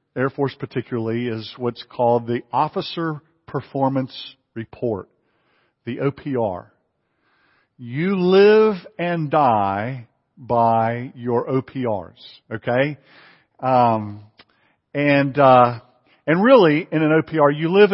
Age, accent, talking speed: 50-69, American, 100 wpm